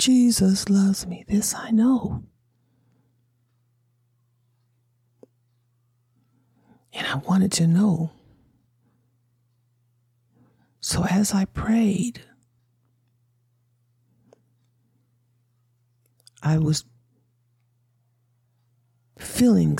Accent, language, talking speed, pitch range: American, English, 55 wpm, 120-160 Hz